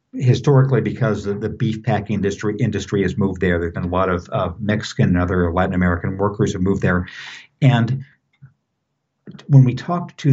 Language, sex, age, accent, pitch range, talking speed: English, male, 60-79, American, 95-130 Hz, 185 wpm